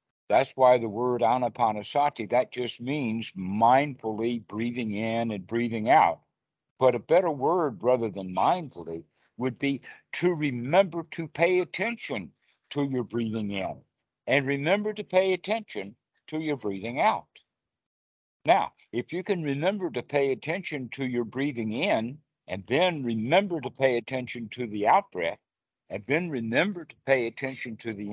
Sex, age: male, 60-79